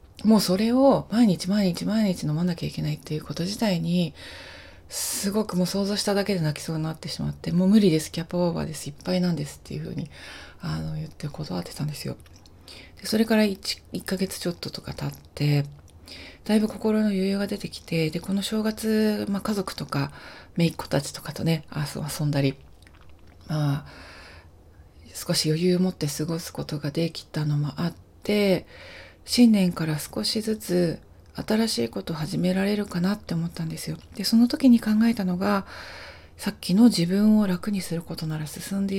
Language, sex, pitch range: Japanese, female, 145-195 Hz